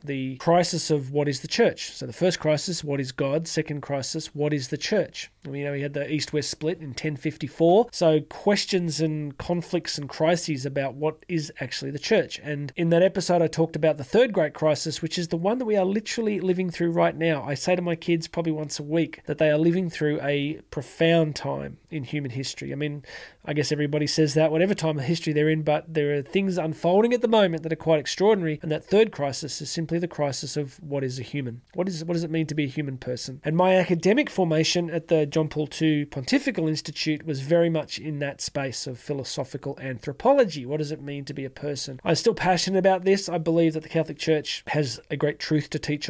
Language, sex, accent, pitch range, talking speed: English, male, Australian, 145-170 Hz, 235 wpm